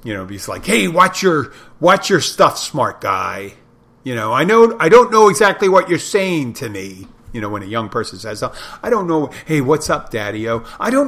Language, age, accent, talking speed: English, 50-69, American, 220 wpm